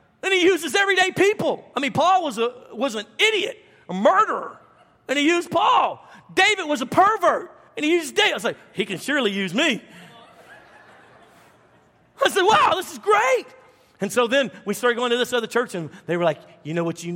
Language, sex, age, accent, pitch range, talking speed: English, male, 40-59, American, 200-275 Hz, 205 wpm